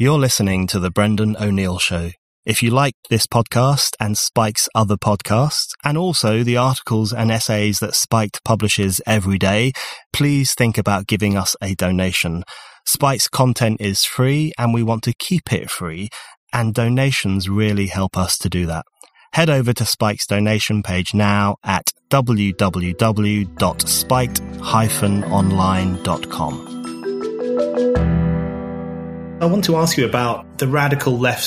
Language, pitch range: English, 105-130 Hz